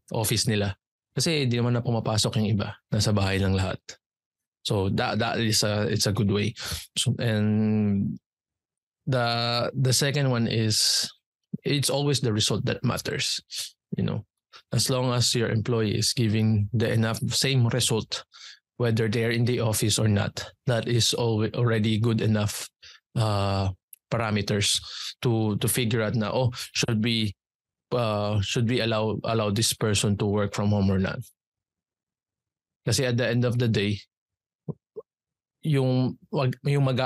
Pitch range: 105-120 Hz